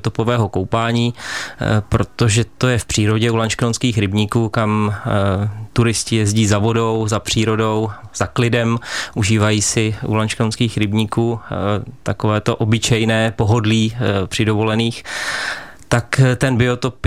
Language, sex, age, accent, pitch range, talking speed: Czech, male, 20-39, native, 105-115 Hz, 110 wpm